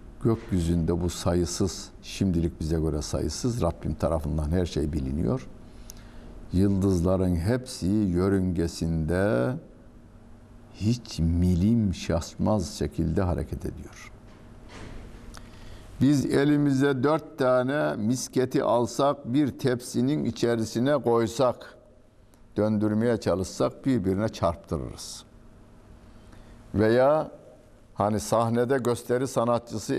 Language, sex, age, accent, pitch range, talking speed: Turkish, male, 60-79, native, 90-120 Hz, 80 wpm